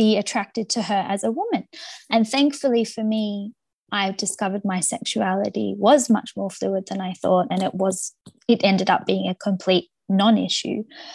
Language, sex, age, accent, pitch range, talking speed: English, female, 20-39, Australian, 200-245 Hz, 165 wpm